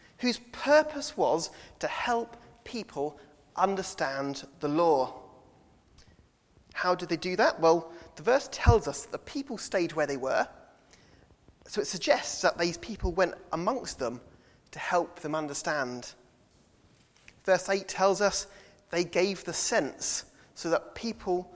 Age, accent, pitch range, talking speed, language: 30-49, British, 145-205 Hz, 140 wpm, English